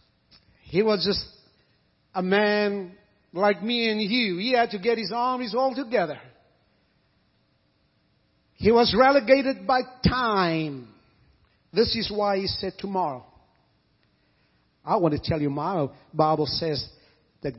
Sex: male